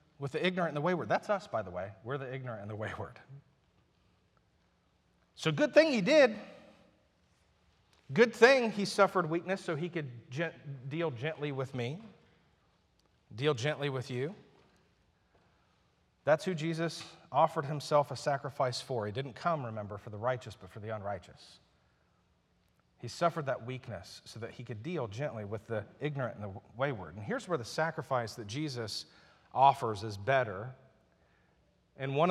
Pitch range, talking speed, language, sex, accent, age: 115-160 Hz, 160 wpm, English, male, American, 40-59